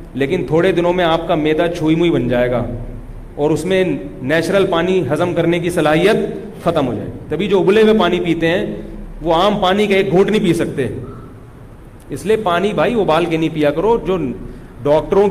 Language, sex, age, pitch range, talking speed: Urdu, male, 40-59, 145-200 Hz, 200 wpm